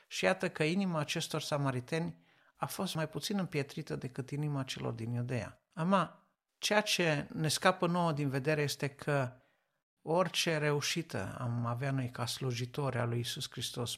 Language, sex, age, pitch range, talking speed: Romanian, male, 60-79, 130-165 Hz, 160 wpm